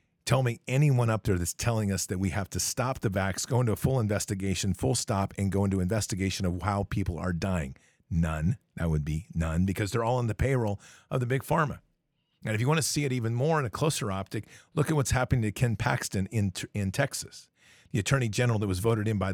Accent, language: American, English